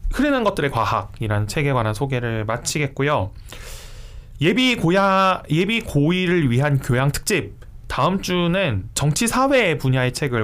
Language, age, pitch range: Korean, 20-39, 110-170 Hz